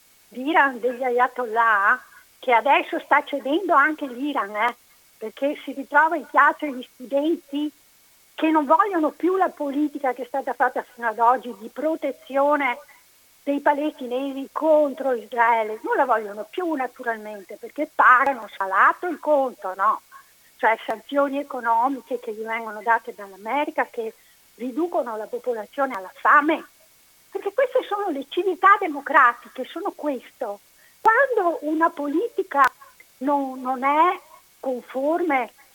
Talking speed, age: 125 wpm, 50-69